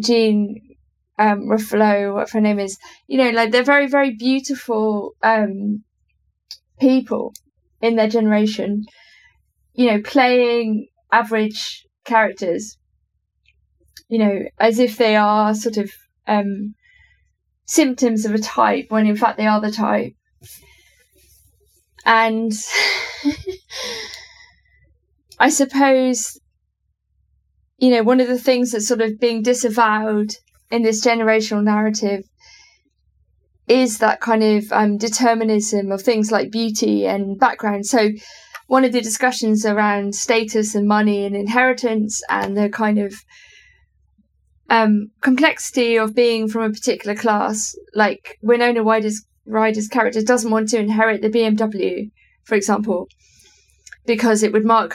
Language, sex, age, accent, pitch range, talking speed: English, female, 20-39, British, 210-240 Hz, 125 wpm